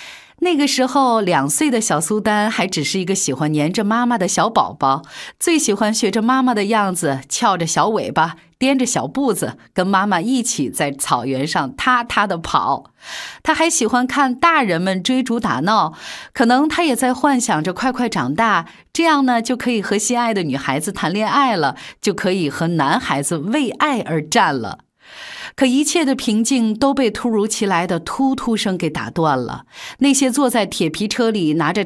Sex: female